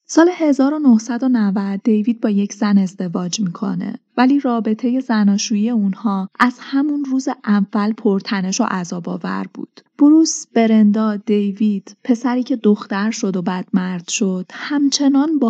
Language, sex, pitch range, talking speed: Persian, female, 195-245 Hz, 125 wpm